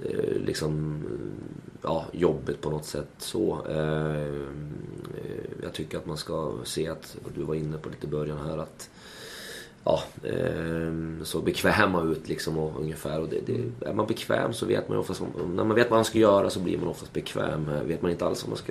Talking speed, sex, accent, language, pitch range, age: 190 wpm, male, native, Swedish, 75-80 Hz, 30-49